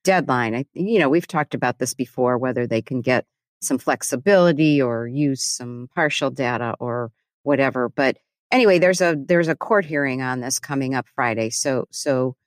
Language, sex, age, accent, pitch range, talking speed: English, female, 40-59, American, 130-150 Hz, 175 wpm